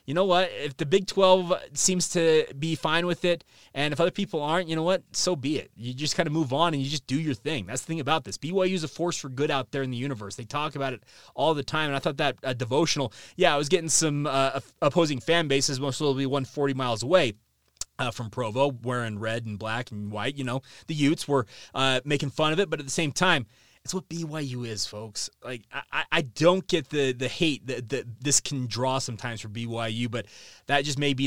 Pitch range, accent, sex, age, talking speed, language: 125-160 Hz, American, male, 20-39, 250 wpm, English